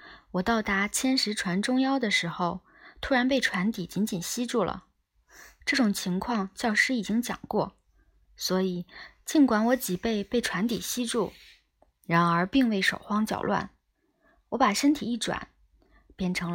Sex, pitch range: female, 180-240 Hz